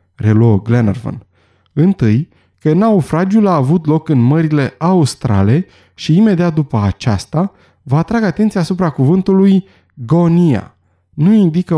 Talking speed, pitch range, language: 115 wpm, 110-170 Hz, Romanian